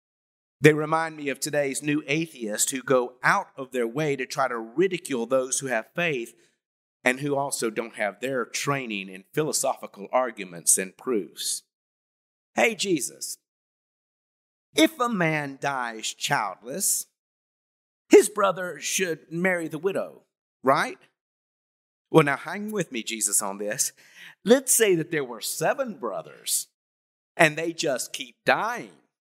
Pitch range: 130-190 Hz